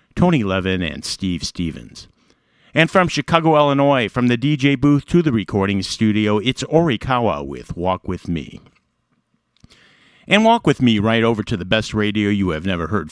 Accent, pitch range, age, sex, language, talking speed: American, 100-135 Hz, 50-69, male, English, 170 wpm